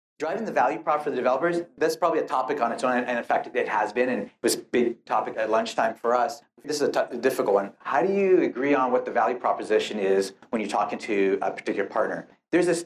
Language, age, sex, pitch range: English, 40-59, male, 115-150 Hz